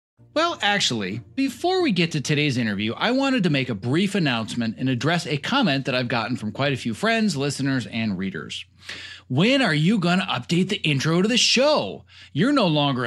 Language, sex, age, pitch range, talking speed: English, male, 30-49, 115-185 Hz, 200 wpm